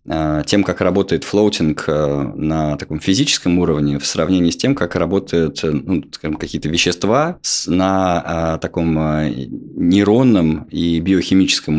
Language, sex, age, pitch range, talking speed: Russian, male, 20-39, 75-100 Hz, 115 wpm